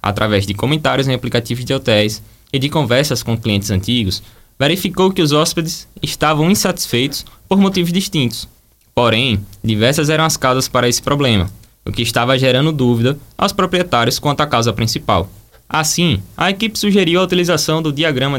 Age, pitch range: 20-39, 110-155 Hz